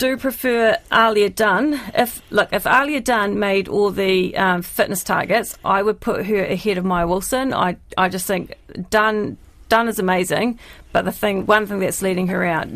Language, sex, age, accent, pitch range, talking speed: English, female, 40-59, Australian, 180-210 Hz, 190 wpm